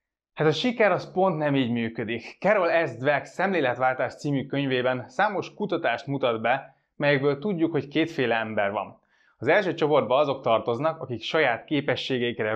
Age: 20-39